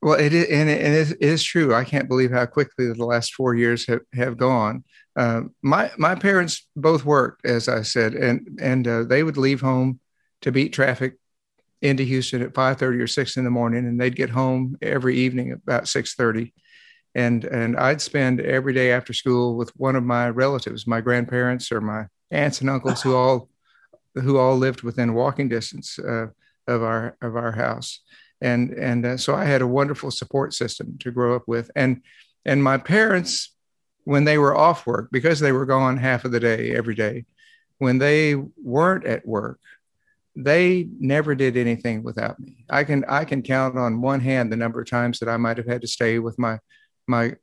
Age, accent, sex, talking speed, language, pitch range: 50-69, American, male, 200 wpm, English, 120-135 Hz